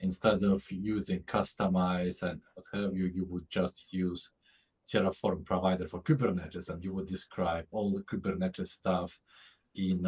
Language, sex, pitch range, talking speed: English, male, 90-100 Hz, 150 wpm